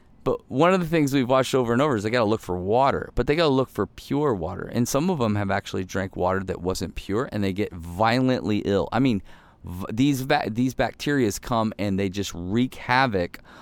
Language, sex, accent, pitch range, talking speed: English, male, American, 100-165 Hz, 230 wpm